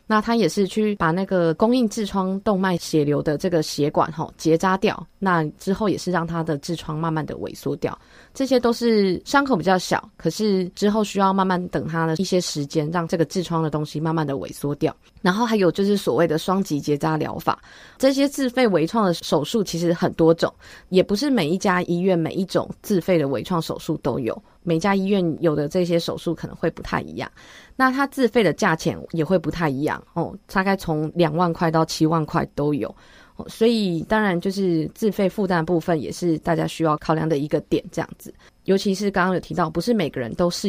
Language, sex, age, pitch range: Chinese, female, 20-39, 160-195 Hz